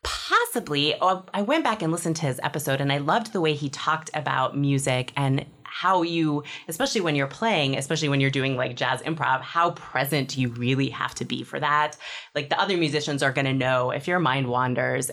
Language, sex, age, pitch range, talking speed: English, female, 20-39, 140-200 Hz, 210 wpm